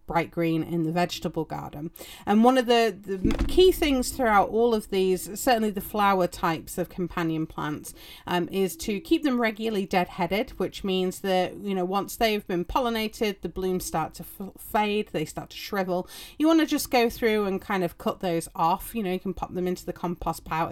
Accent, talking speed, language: British, 210 wpm, English